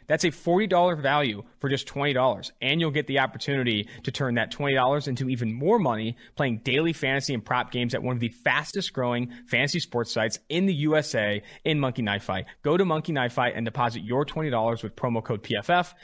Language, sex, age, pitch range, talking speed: English, male, 20-39, 120-155 Hz, 200 wpm